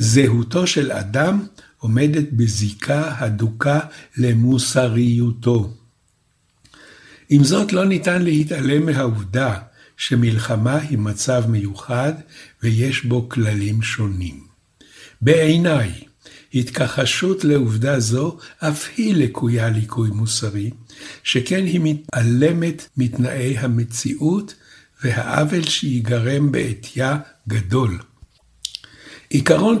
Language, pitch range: Hebrew, 115-150 Hz